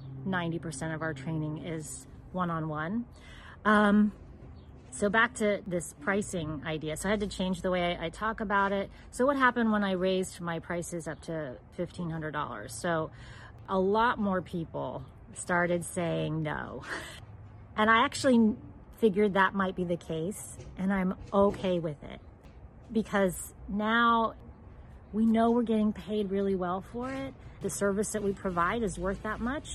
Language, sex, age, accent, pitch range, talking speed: English, female, 40-59, American, 165-210 Hz, 155 wpm